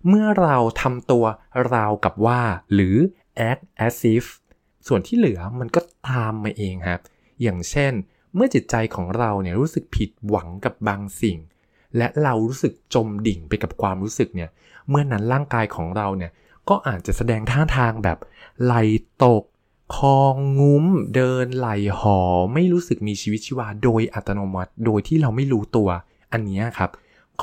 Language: Thai